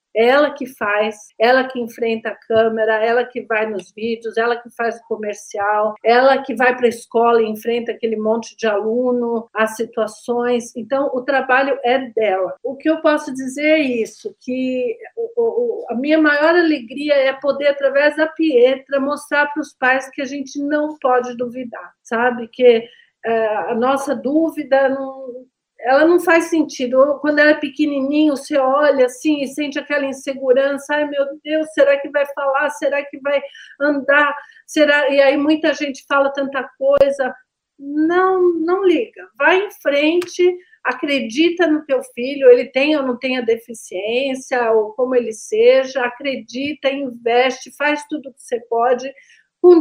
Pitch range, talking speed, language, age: 240-290 Hz, 165 wpm, Portuguese, 50-69